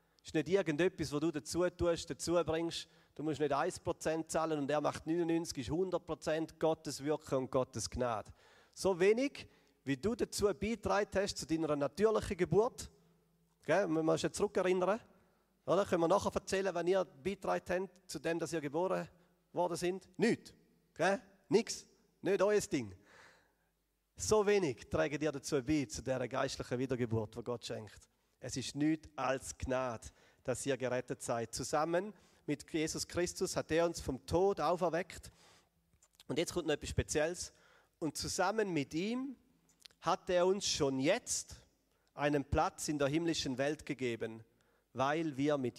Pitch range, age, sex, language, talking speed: 130-175 Hz, 40-59, male, German, 160 wpm